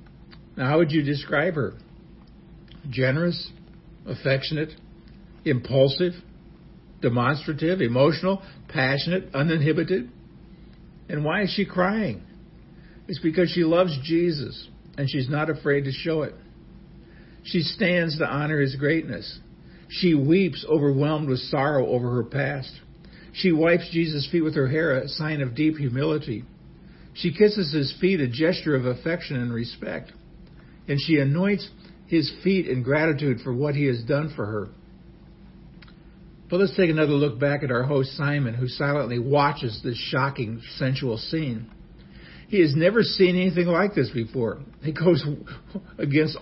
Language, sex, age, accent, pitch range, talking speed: English, male, 60-79, American, 135-175 Hz, 140 wpm